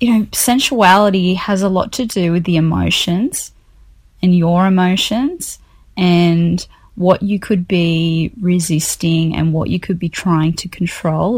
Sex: female